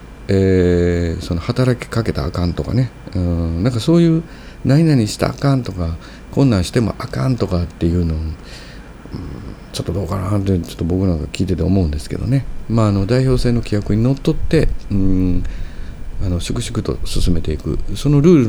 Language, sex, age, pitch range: Japanese, male, 50-69, 85-115 Hz